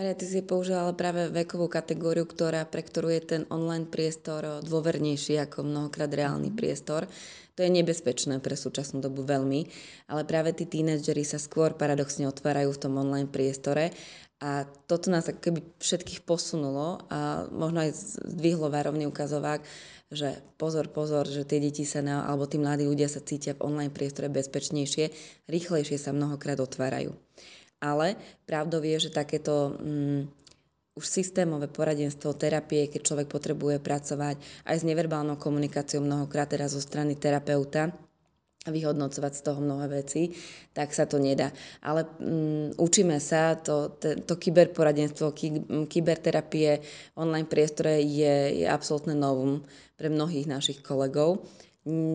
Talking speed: 145 wpm